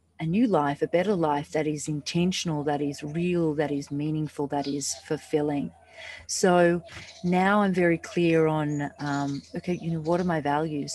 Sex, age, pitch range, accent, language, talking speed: female, 40-59, 145-175 Hz, Australian, English, 175 wpm